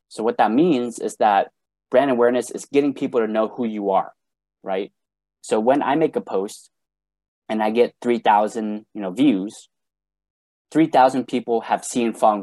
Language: English